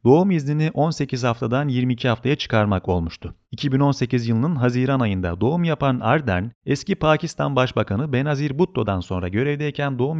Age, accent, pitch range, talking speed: 40-59, native, 105-140 Hz, 135 wpm